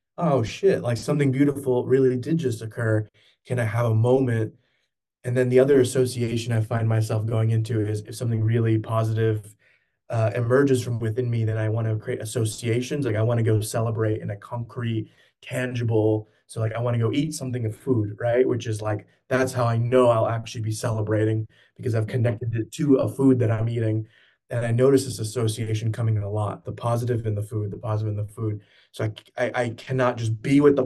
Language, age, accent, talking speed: English, 20-39, American, 215 wpm